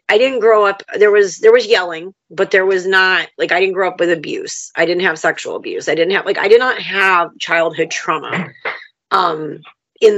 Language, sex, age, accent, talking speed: English, female, 30-49, American, 220 wpm